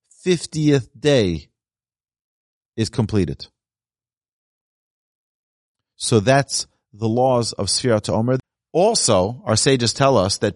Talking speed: 100 wpm